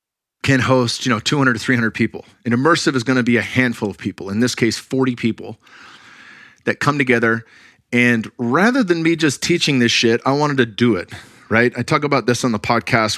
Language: English